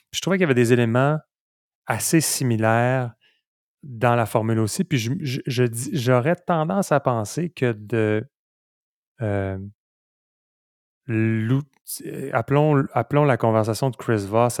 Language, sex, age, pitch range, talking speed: French, male, 30-49, 105-125 Hz, 135 wpm